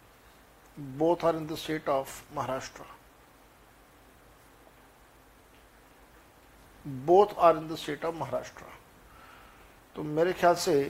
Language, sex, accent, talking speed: Hindi, male, native, 75 wpm